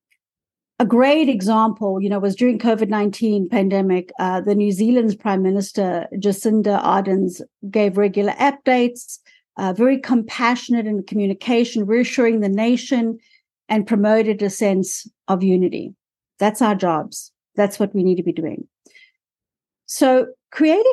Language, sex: English, female